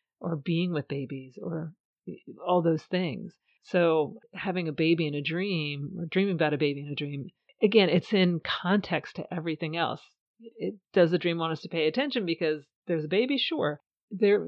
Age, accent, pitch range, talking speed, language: 40-59, American, 155-185 Hz, 185 wpm, English